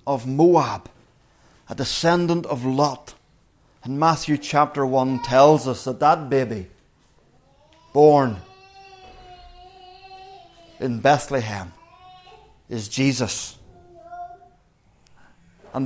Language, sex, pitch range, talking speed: English, male, 130-195 Hz, 80 wpm